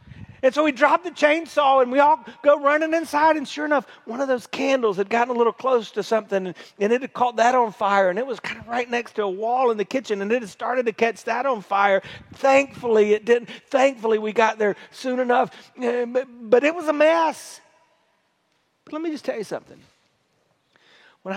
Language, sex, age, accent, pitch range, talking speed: English, male, 40-59, American, 225-300 Hz, 220 wpm